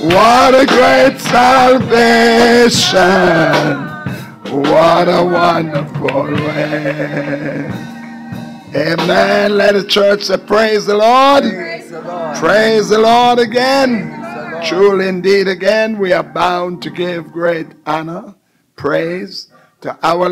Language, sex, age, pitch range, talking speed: English, male, 60-79, 150-200 Hz, 95 wpm